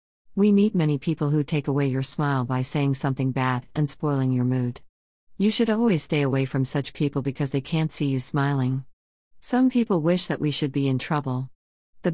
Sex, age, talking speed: female, 40-59, 205 wpm